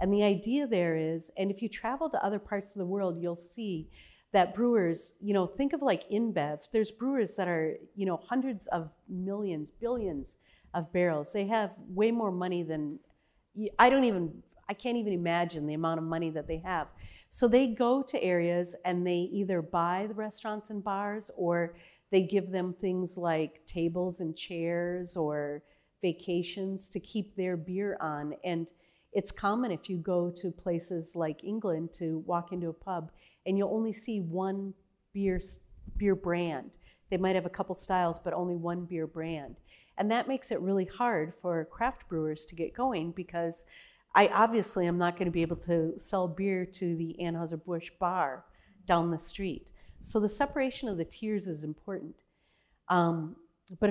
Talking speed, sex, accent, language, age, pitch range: 180 wpm, female, American, English, 40-59, 170-205 Hz